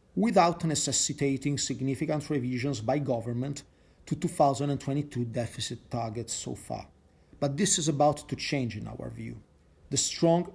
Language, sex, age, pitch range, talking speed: English, male, 40-59, 120-150 Hz, 130 wpm